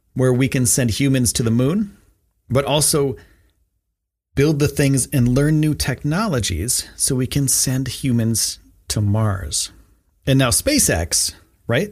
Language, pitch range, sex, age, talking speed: English, 90-130 Hz, male, 40-59, 140 wpm